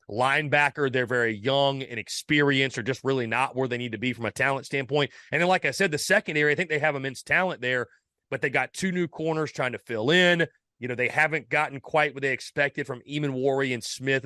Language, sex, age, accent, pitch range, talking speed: English, male, 30-49, American, 130-165 Hz, 240 wpm